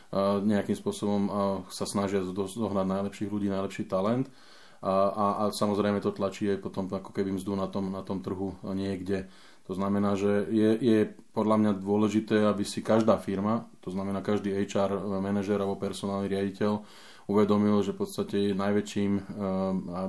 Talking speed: 155 wpm